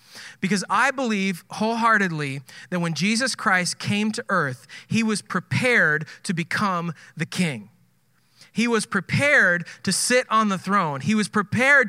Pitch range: 170-235 Hz